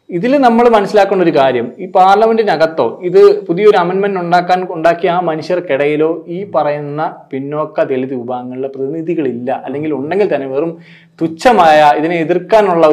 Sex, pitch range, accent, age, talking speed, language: male, 125-175 Hz, native, 20-39, 125 wpm, Malayalam